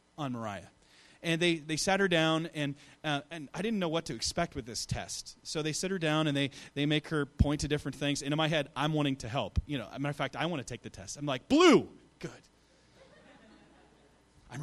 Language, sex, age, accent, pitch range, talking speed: English, male, 30-49, American, 130-155 Hz, 245 wpm